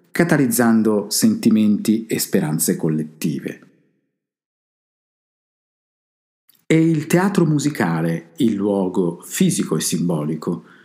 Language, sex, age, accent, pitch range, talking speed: Italian, male, 50-69, native, 100-155 Hz, 75 wpm